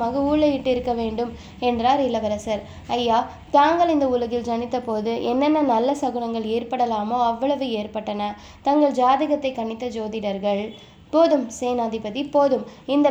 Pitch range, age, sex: 235-280 Hz, 20-39, female